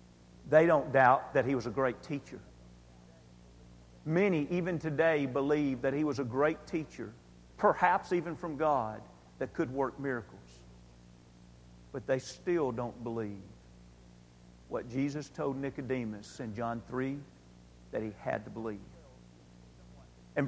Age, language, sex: 50-69, English, male